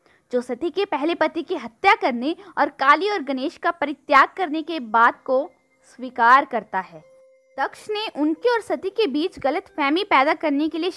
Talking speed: 185 wpm